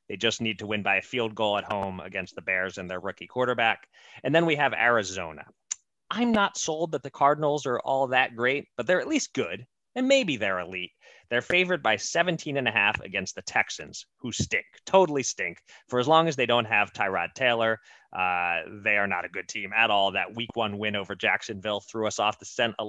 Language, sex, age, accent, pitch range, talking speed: English, male, 30-49, American, 100-145 Hz, 225 wpm